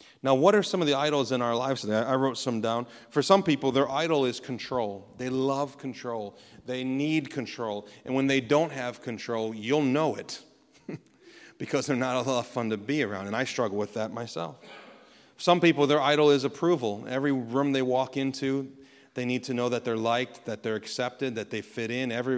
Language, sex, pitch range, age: English, male, 120-150 Hz, 30-49